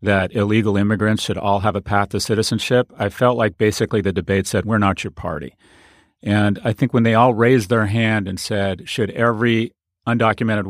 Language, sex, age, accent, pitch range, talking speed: English, male, 40-59, American, 105-125 Hz, 195 wpm